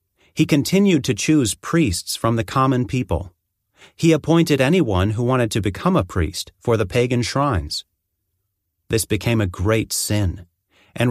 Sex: male